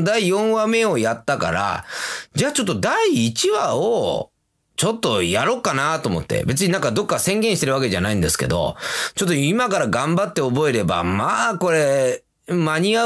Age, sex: 30-49, male